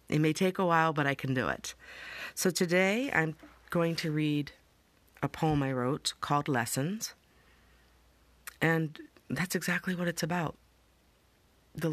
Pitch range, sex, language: 140-165 Hz, female, English